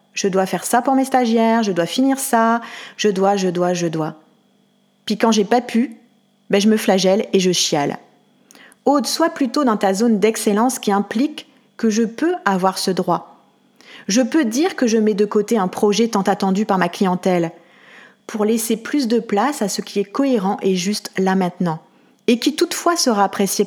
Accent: French